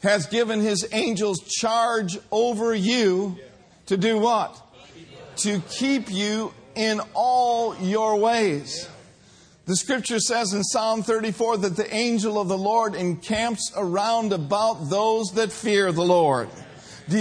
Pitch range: 190-225 Hz